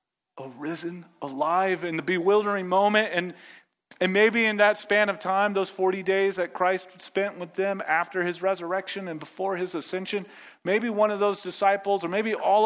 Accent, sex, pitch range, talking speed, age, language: American, male, 130-195 Hz, 175 wpm, 40-59, English